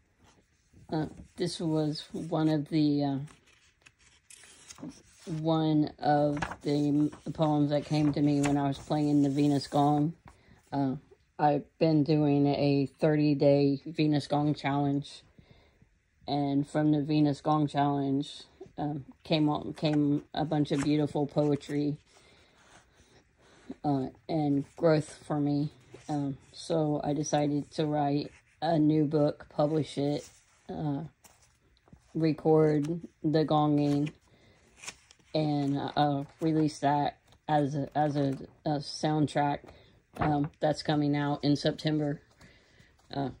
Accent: American